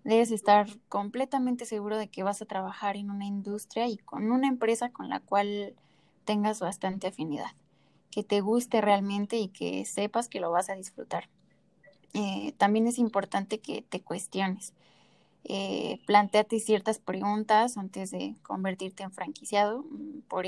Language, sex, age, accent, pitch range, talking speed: Spanish, female, 10-29, Mexican, 190-220 Hz, 150 wpm